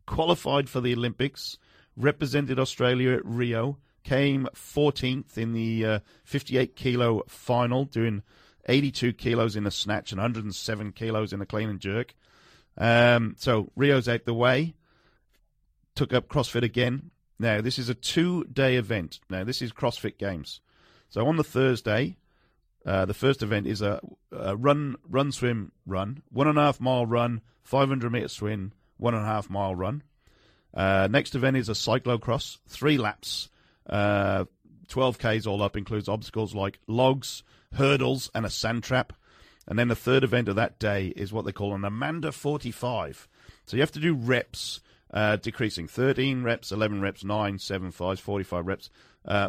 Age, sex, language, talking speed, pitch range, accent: 40-59, male, English, 150 wpm, 105-130 Hz, British